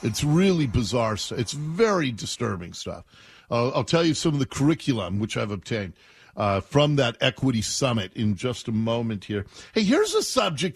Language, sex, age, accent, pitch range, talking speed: English, male, 50-69, American, 120-175 Hz, 180 wpm